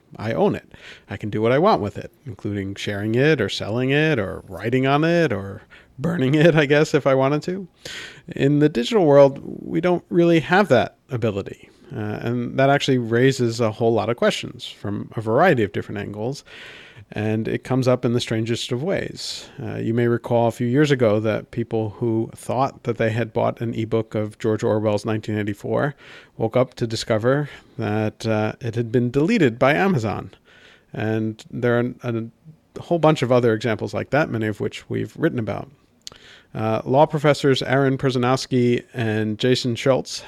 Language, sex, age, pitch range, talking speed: English, male, 50-69, 110-130 Hz, 185 wpm